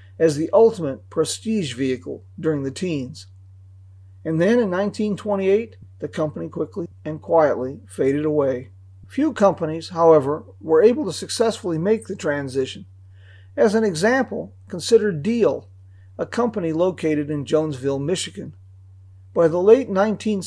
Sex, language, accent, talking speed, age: male, English, American, 130 wpm, 40-59